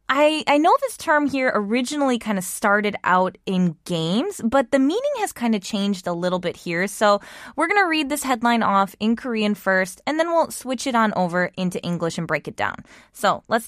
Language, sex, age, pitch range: Korean, female, 20-39, 185-255 Hz